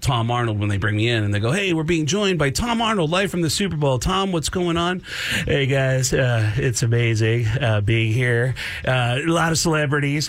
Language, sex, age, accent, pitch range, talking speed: English, male, 40-59, American, 115-150 Hz, 225 wpm